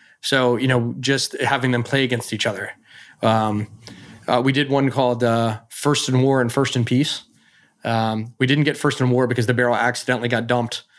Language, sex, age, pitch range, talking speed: English, male, 20-39, 120-135 Hz, 200 wpm